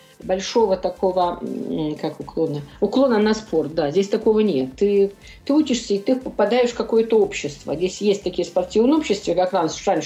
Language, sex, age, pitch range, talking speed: Russian, female, 50-69, 170-225 Hz, 160 wpm